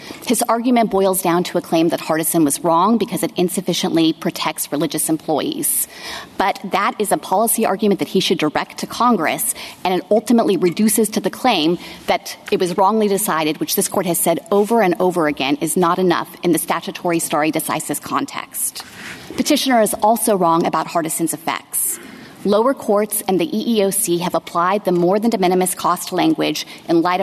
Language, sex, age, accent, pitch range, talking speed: English, female, 30-49, American, 170-220 Hz, 180 wpm